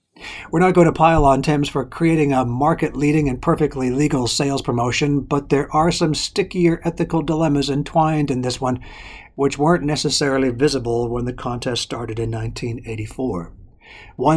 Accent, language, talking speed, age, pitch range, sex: American, English, 155 wpm, 60-79, 130-155 Hz, male